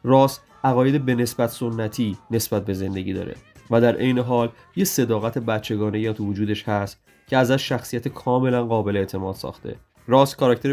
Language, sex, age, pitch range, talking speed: Persian, male, 30-49, 105-125 Hz, 160 wpm